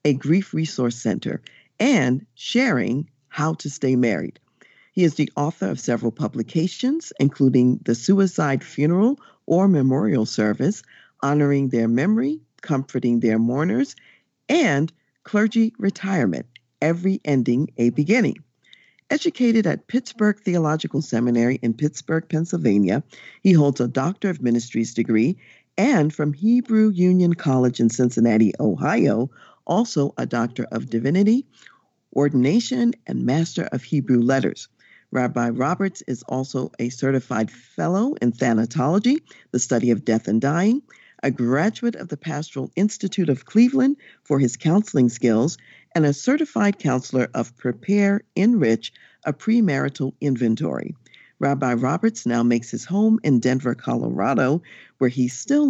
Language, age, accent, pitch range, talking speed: English, 50-69, American, 125-195 Hz, 130 wpm